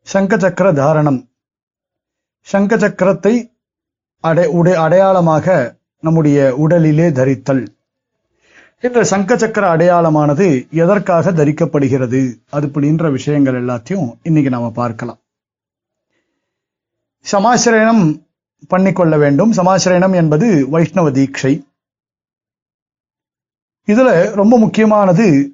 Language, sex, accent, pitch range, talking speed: Tamil, male, native, 140-195 Hz, 80 wpm